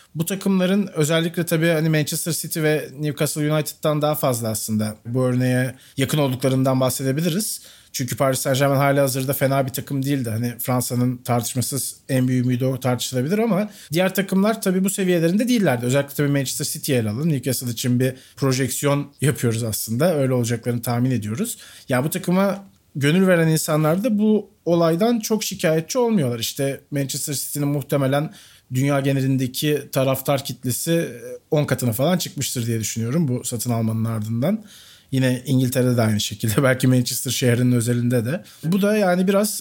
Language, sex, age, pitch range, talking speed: Turkish, male, 40-59, 125-165 Hz, 155 wpm